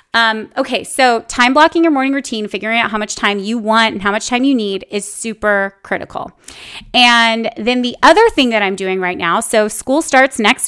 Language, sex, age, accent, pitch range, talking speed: English, female, 30-49, American, 215-305 Hz, 215 wpm